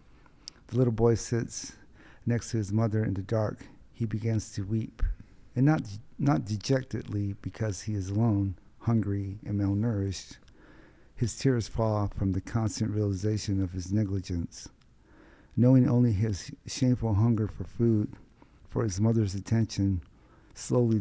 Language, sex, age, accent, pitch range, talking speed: English, male, 50-69, American, 100-115 Hz, 135 wpm